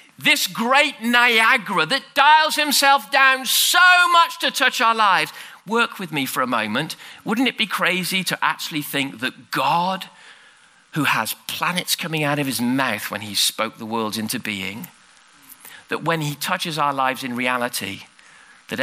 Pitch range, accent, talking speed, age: 120-200 Hz, British, 165 wpm, 40-59